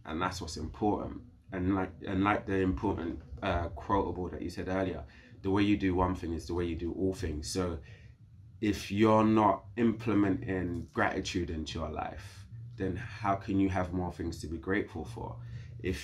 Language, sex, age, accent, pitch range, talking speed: English, male, 20-39, British, 90-110 Hz, 185 wpm